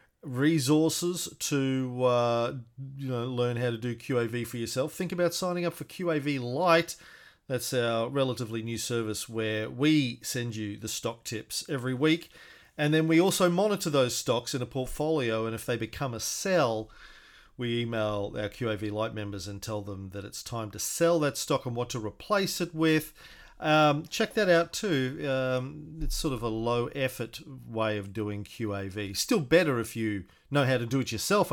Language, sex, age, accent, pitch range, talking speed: English, male, 40-59, Australian, 115-155 Hz, 185 wpm